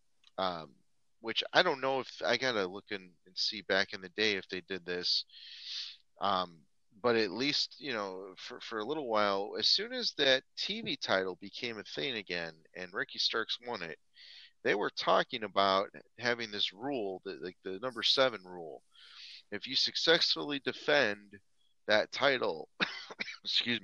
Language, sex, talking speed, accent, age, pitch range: English, male, 165 wpm, American, 30-49, 95-130 Hz